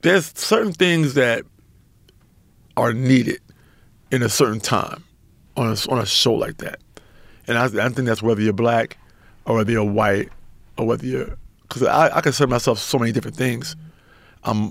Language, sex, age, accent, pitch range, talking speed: English, male, 50-69, American, 110-145 Hz, 170 wpm